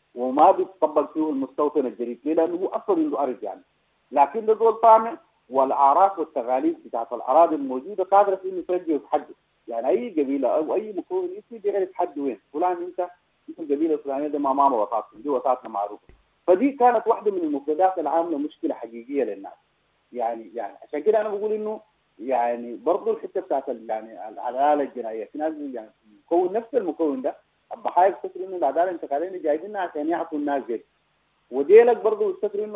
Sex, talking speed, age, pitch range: male, 160 wpm, 50-69, 140-210 Hz